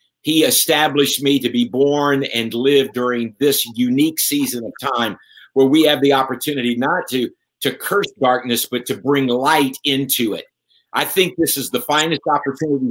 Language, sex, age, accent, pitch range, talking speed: English, male, 50-69, American, 130-150 Hz, 170 wpm